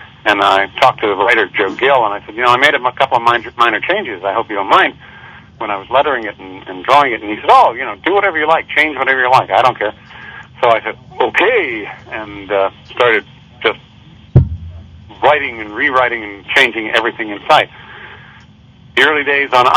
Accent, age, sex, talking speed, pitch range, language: American, 50-69, male, 215 wpm, 110-135 Hz, English